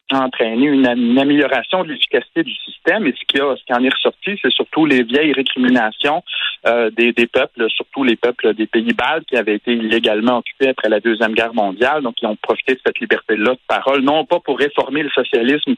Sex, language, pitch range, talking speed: male, French, 120-145 Hz, 215 wpm